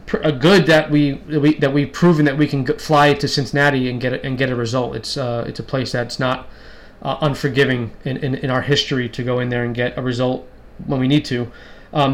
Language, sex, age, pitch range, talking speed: English, male, 20-39, 125-145 Hz, 240 wpm